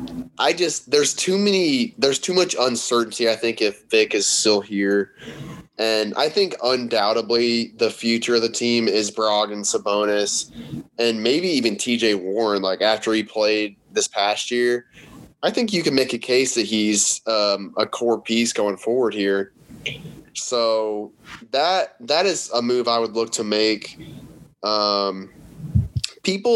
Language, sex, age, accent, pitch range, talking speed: English, male, 20-39, American, 105-130 Hz, 160 wpm